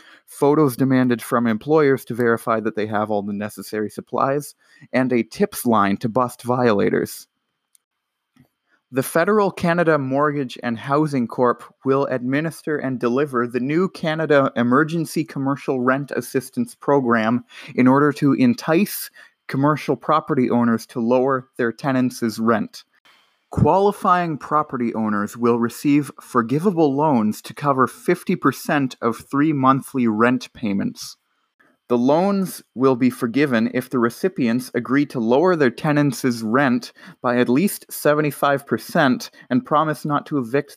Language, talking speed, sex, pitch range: English, 130 wpm, male, 120-150 Hz